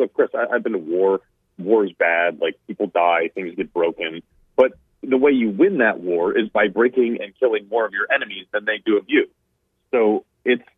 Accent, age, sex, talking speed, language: American, 40-59, male, 215 wpm, English